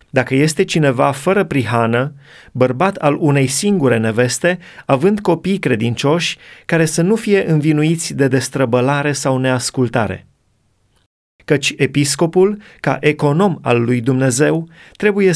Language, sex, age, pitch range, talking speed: Romanian, male, 30-49, 130-165 Hz, 115 wpm